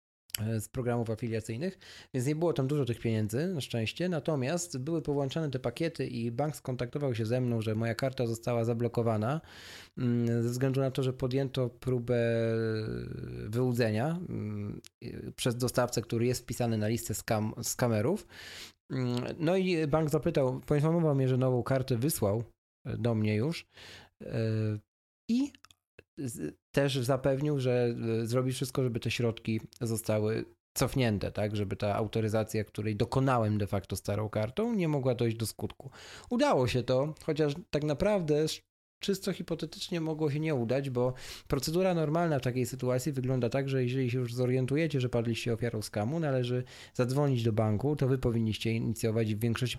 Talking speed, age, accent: 150 wpm, 20-39, native